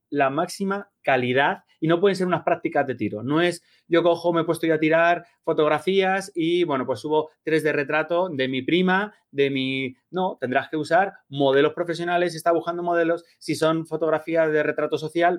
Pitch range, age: 130-170 Hz, 30-49